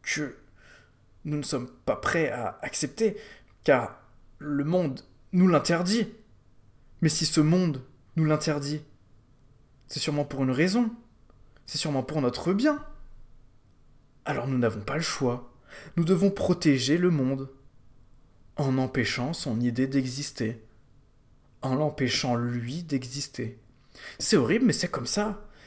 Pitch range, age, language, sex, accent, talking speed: 120-150 Hz, 20-39, French, male, French, 130 wpm